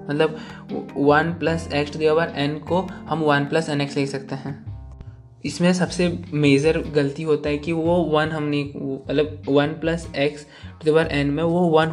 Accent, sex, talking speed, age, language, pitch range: native, male, 170 wpm, 20-39, Hindi, 140-155 Hz